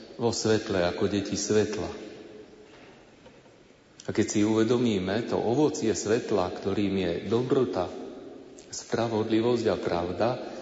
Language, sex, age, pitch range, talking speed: Slovak, male, 40-59, 100-110 Hz, 100 wpm